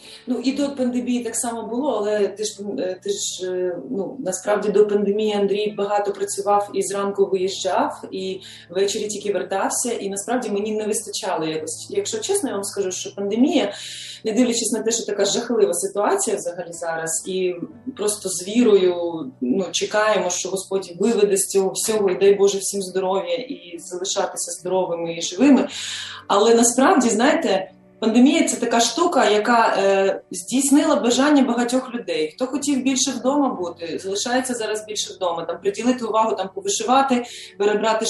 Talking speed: 160 wpm